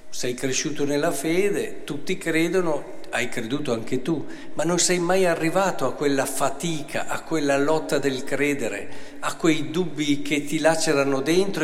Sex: male